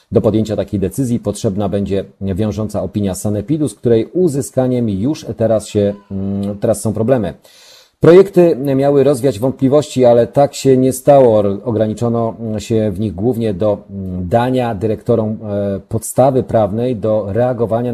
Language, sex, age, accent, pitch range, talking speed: Polish, male, 40-59, native, 100-125 Hz, 130 wpm